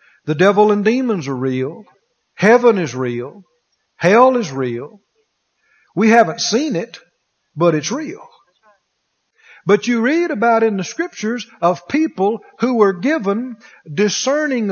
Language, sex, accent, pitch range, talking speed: English, male, American, 180-240 Hz, 130 wpm